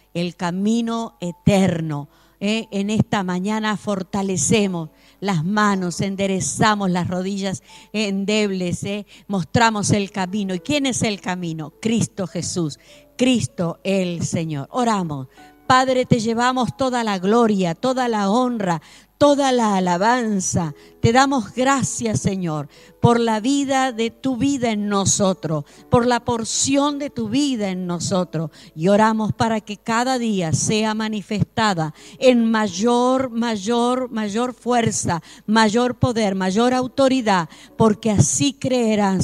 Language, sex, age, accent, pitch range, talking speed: Spanish, female, 50-69, American, 175-240 Hz, 120 wpm